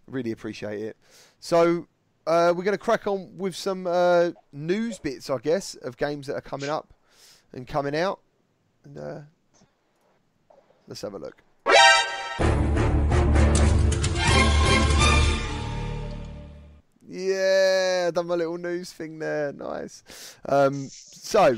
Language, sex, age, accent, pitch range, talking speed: English, male, 30-49, British, 110-170 Hz, 115 wpm